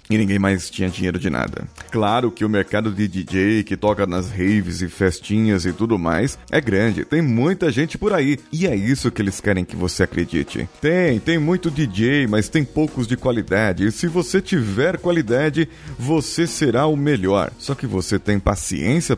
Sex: male